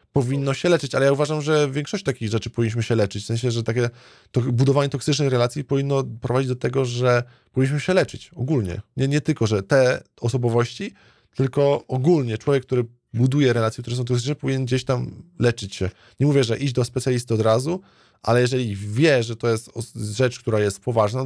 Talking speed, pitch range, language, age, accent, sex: 190 wpm, 115-140 Hz, Polish, 20-39, native, male